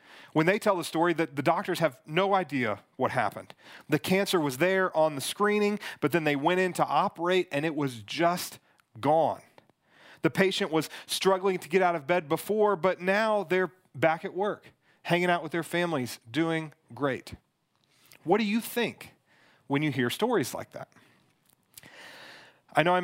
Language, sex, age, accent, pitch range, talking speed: English, male, 40-59, American, 140-185 Hz, 175 wpm